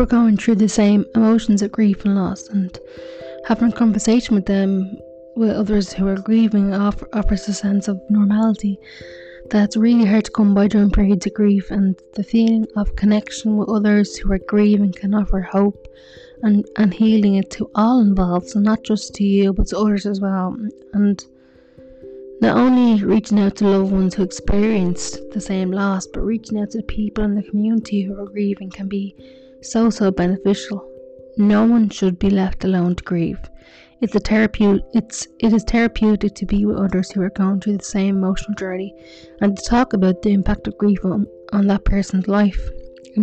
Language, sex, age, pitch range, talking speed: English, female, 20-39, 190-215 Hz, 190 wpm